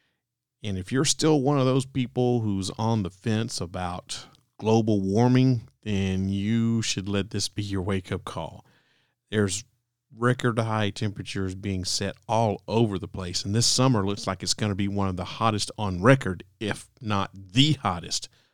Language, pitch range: English, 100-125 Hz